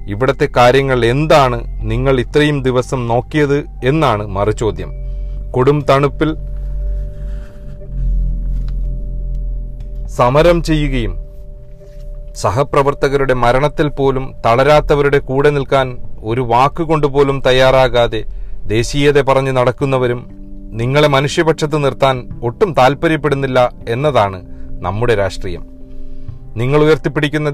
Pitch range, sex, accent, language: 120-150 Hz, male, native, Malayalam